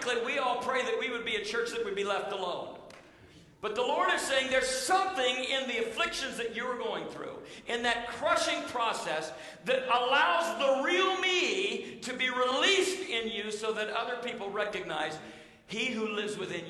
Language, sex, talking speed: English, male, 185 wpm